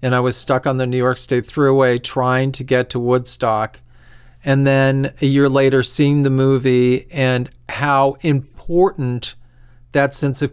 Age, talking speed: 40-59, 165 wpm